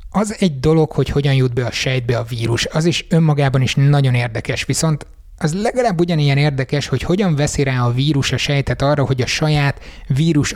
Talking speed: 200 wpm